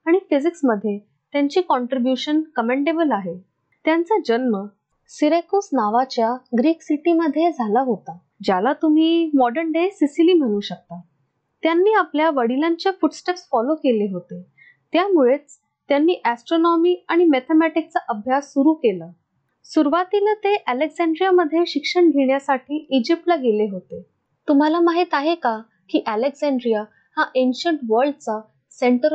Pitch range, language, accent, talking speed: 230-330 Hz, Marathi, native, 60 wpm